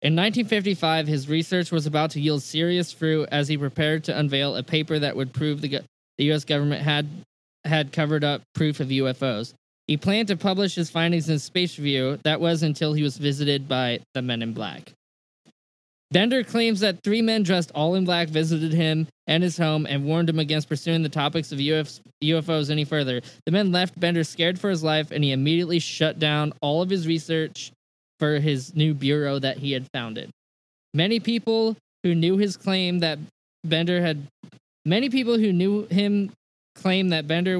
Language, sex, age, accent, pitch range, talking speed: English, male, 20-39, American, 150-185 Hz, 190 wpm